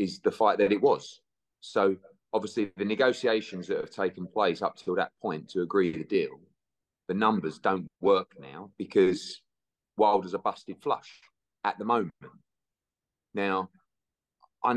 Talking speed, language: 150 wpm, English